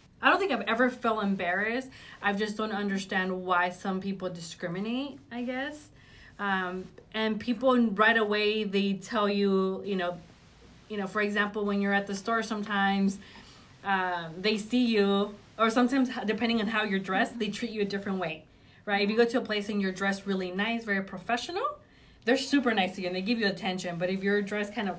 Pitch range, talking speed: 195-230 Hz, 200 wpm